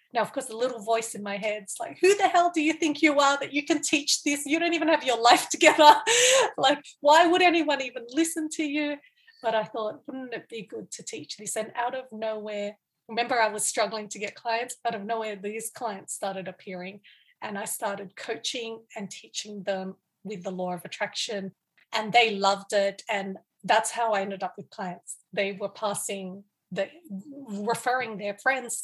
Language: English